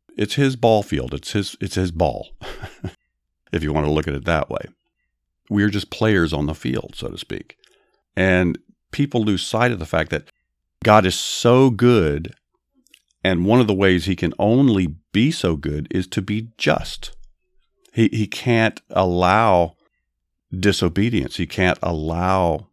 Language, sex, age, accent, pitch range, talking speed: English, male, 50-69, American, 80-100 Hz, 165 wpm